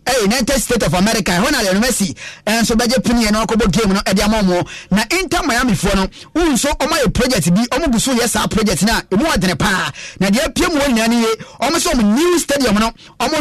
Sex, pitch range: male, 195-250 Hz